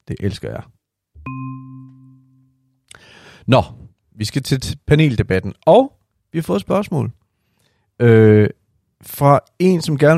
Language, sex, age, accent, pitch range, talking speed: Danish, male, 40-59, native, 105-130 Hz, 105 wpm